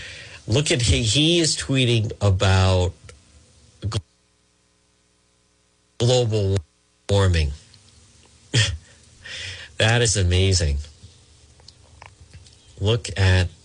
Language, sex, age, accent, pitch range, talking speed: English, male, 50-69, American, 85-110 Hz, 60 wpm